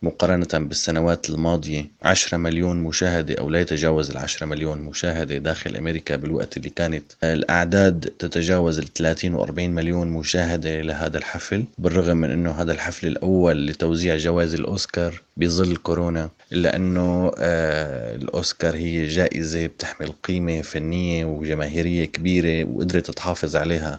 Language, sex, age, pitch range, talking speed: Arabic, male, 30-49, 80-95 Hz, 125 wpm